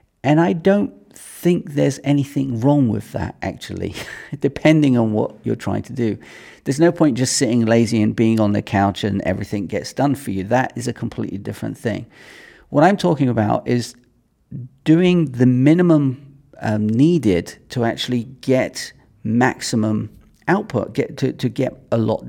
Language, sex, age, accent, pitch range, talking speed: English, male, 40-59, British, 110-140 Hz, 165 wpm